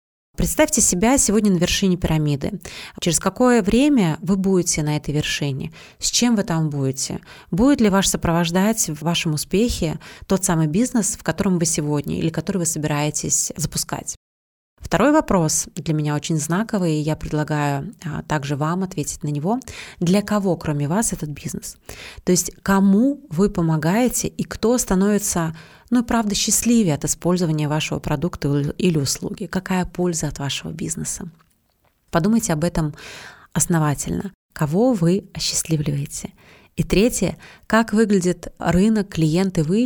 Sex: female